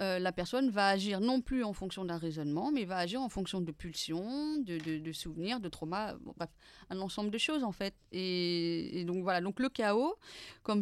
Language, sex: French, female